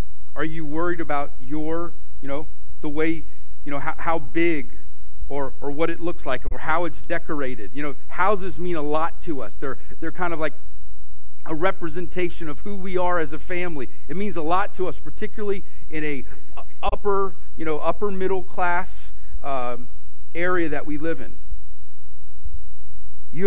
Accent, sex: American, male